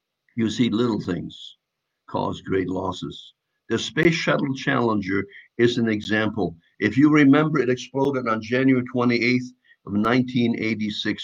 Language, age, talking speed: English, 60-79, 130 wpm